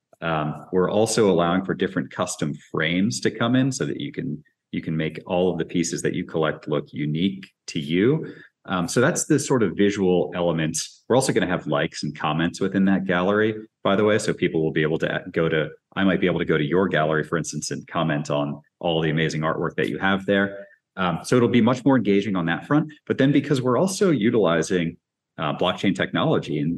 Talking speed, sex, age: 225 wpm, male, 30-49